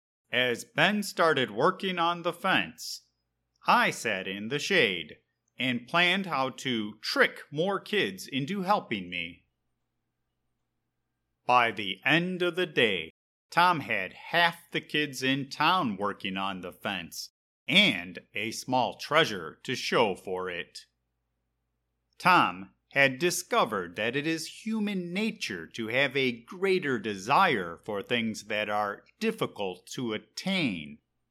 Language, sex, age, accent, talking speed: English, male, 30-49, American, 130 wpm